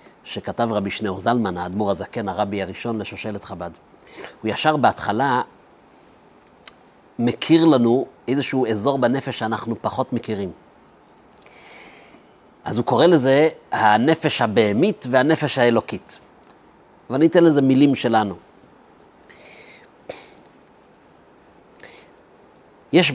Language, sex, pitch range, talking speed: Hebrew, male, 115-140 Hz, 90 wpm